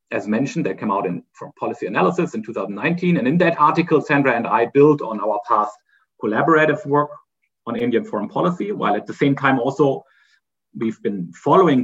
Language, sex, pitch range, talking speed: French, male, 110-150 Hz, 190 wpm